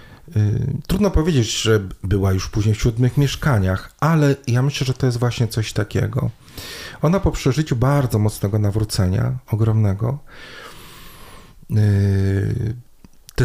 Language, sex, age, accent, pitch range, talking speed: Polish, male, 40-59, native, 105-135 Hz, 115 wpm